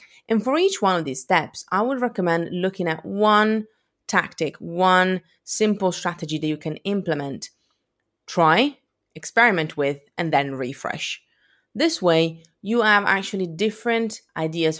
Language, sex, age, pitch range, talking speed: English, female, 30-49, 155-215 Hz, 140 wpm